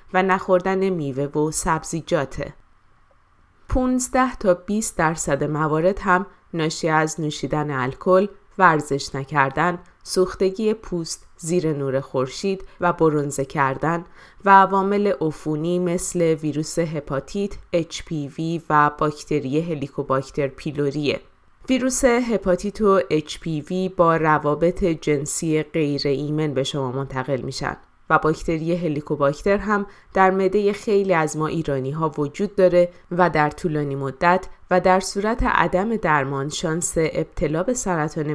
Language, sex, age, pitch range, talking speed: Persian, female, 20-39, 145-185 Hz, 115 wpm